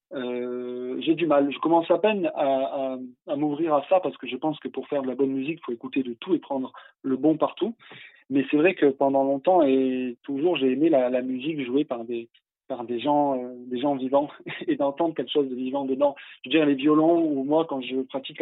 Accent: French